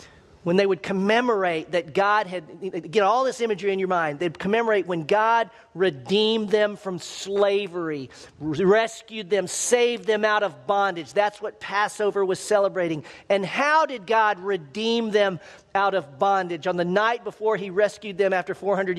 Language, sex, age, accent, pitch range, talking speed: English, male, 40-59, American, 185-225 Hz, 165 wpm